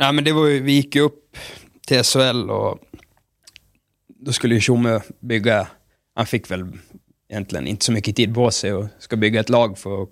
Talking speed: 190 wpm